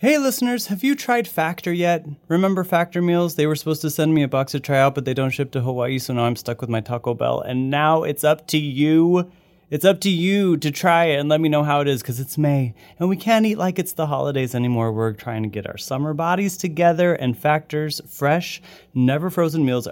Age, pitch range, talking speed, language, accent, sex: 30-49, 115-175 Hz, 240 wpm, English, American, male